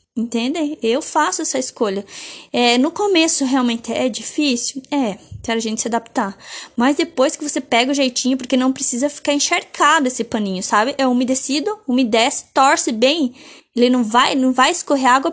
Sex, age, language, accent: female, 10-29, Portuguese, Brazilian